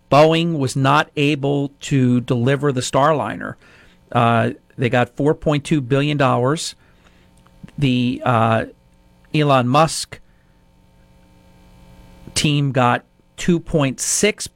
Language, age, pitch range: English, 50-69, 110-140 Hz